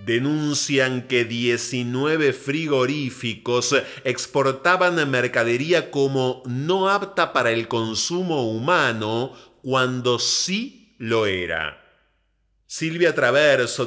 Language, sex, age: Spanish, male, 30-49